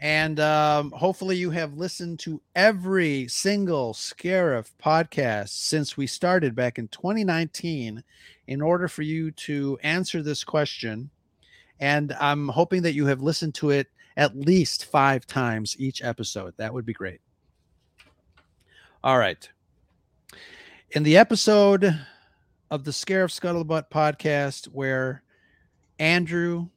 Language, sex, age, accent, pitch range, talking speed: English, male, 40-59, American, 130-165 Hz, 125 wpm